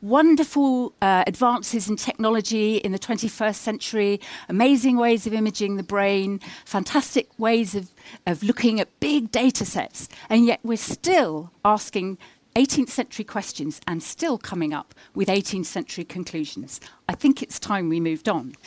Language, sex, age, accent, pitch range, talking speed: English, female, 50-69, British, 190-260 Hz, 150 wpm